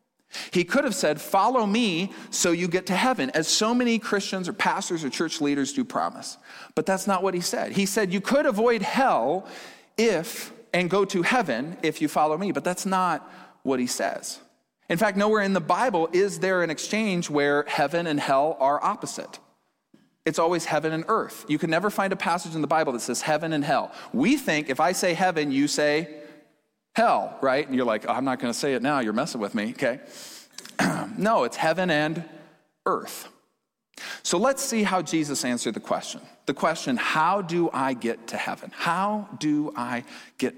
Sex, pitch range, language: male, 145-200 Hz, English